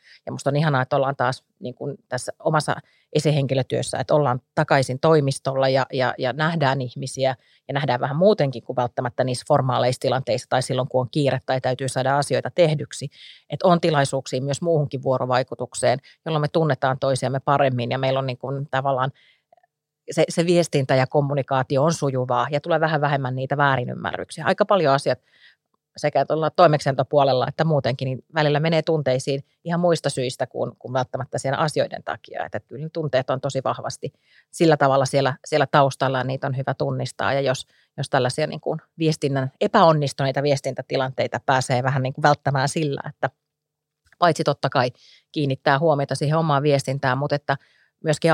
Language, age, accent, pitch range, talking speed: Finnish, 30-49, native, 130-150 Hz, 165 wpm